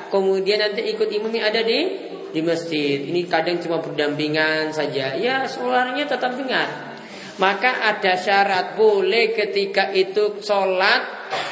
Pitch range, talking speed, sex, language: 175-235 Hz, 130 wpm, male, Malay